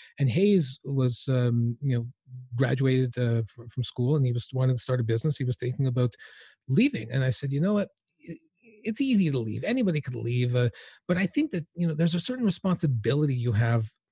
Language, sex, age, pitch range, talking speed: English, male, 40-59, 125-160 Hz, 215 wpm